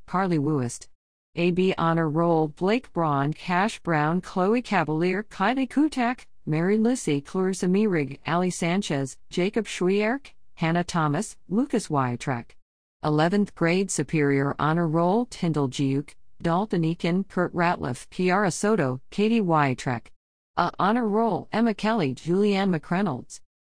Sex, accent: female, American